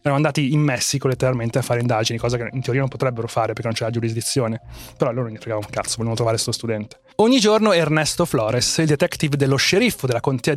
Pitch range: 120-165 Hz